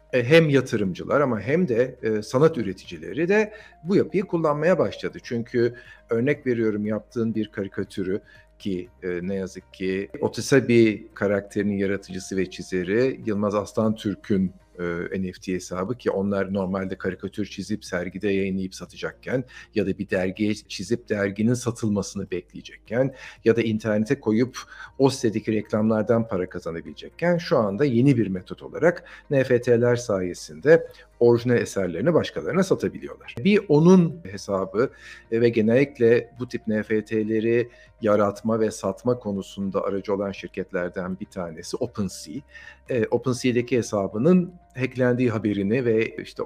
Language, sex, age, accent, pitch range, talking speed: Turkish, male, 50-69, native, 100-130 Hz, 125 wpm